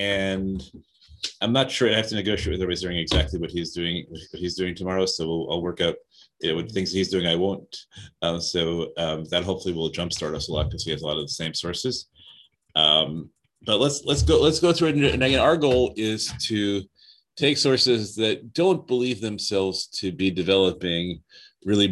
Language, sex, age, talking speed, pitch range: English, male, 30-49, 210 wpm, 90-110 Hz